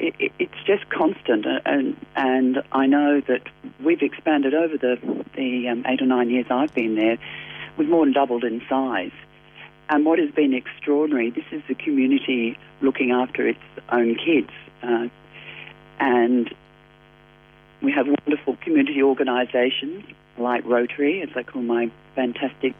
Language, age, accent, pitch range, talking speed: English, 40-59, British, 125-155 Hz, 145 wpm